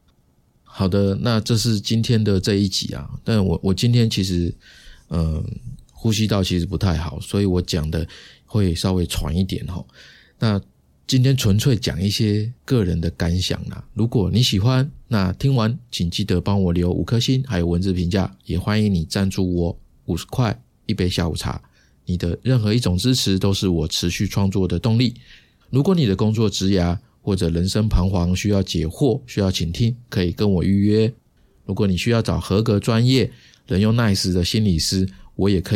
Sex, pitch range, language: male, 90-110 Hz, Chinese